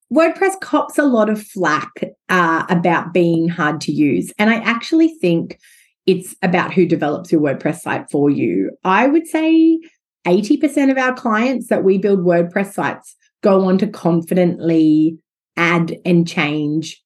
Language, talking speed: English, 160 wpm